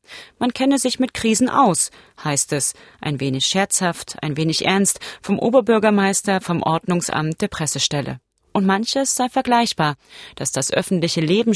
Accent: German